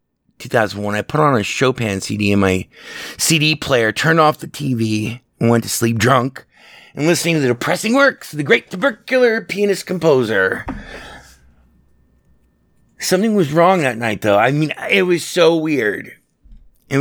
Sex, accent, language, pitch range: male, American, English, 100-150 Hz